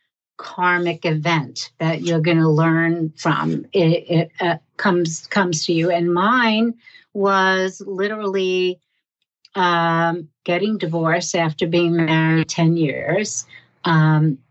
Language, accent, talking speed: English, American, 115 wpm